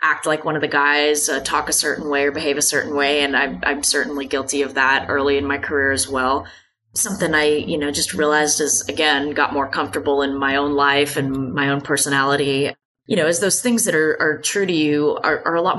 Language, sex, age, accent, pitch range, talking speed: English, female, 20-39, American, 140-160 Hz, 240 wpm